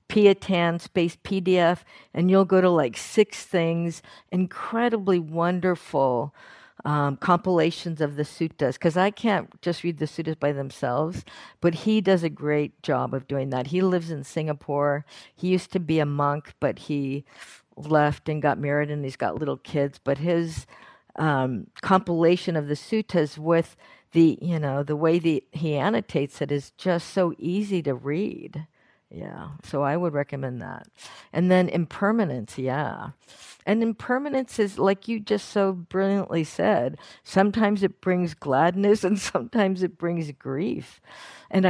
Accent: American